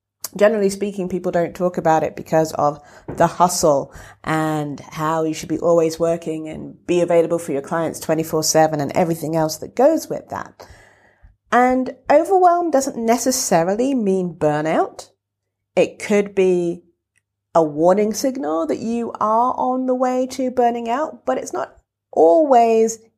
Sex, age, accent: female, 40-59, British